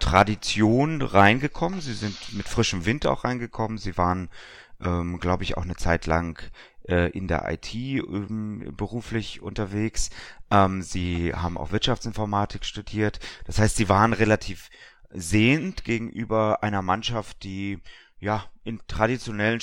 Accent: German